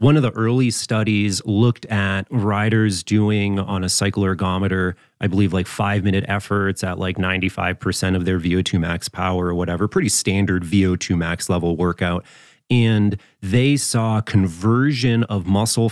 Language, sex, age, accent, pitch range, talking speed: English, male, 30-49, American, 95-120 Hz, 155 wpm